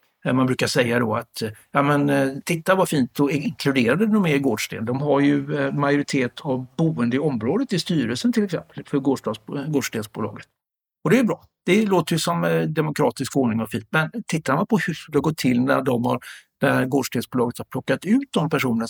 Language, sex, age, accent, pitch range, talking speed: Swedish, male, 60-79, native, 125-160 Hz, 185 wpm